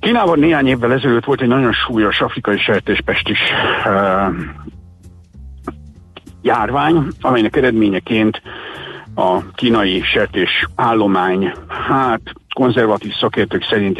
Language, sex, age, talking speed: Hungarian, male, 60-79, 85 wpm